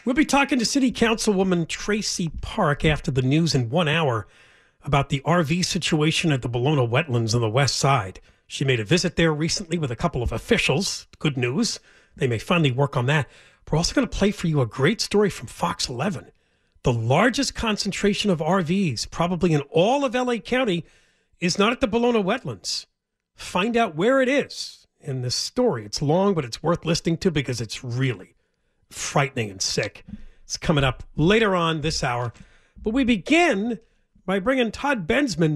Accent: American